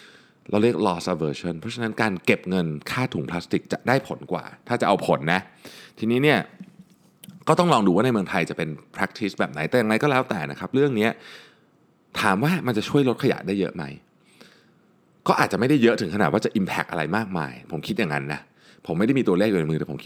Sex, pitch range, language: male, 75-115 Hz, Thai